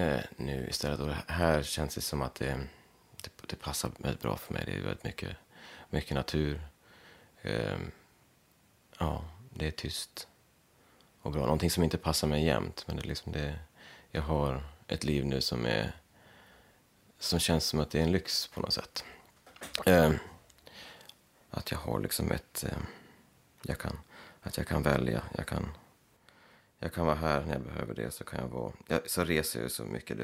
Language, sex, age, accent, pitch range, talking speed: English, male, 30-49, Swedish, 70-85 Hz, 185 wpm